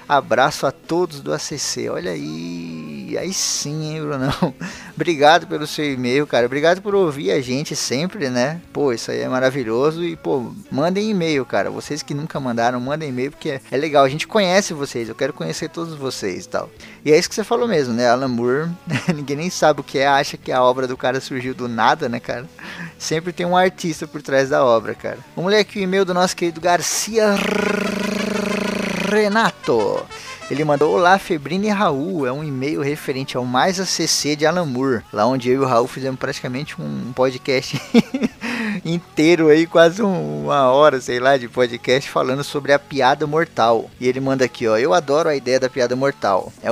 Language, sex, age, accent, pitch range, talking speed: Portuguese, male, 20-39, Brazilian, 130-175 Hz, 195 wpm